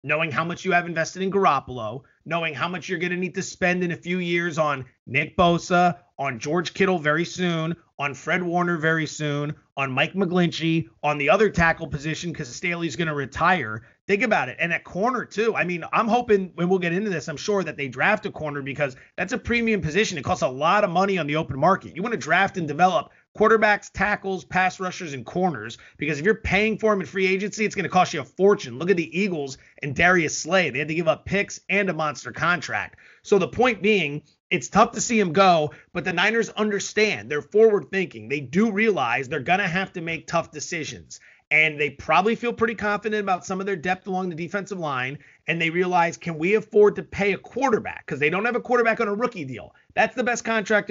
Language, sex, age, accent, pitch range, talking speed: English, male, 30-49, American, 155-200 Hz, 230 wpm